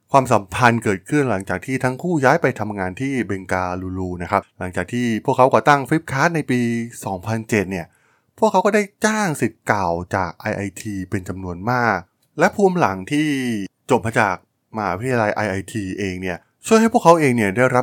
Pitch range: 95-130 Hz